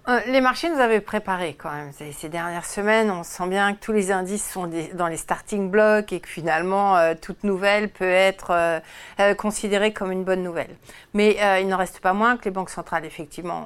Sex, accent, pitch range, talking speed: female, French, 165-200 Hz, 190 wpm